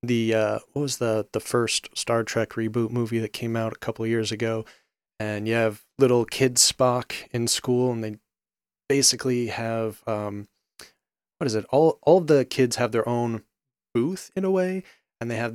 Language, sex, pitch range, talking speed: English, male, 110-125 Hz, 185 wpm